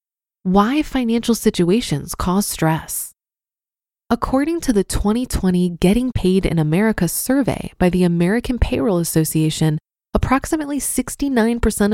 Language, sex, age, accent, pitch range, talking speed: English, female, 20-39, American, 175-225 Hz, 105 wpm